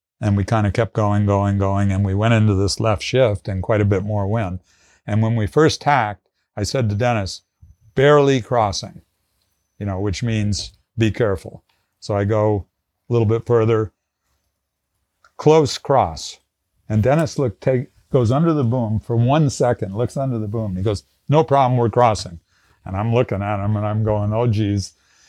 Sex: male